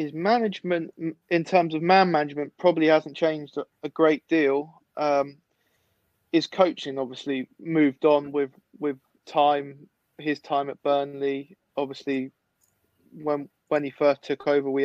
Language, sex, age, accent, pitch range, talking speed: English, male, 20-39, British, 135-145 Hz, 135 wpm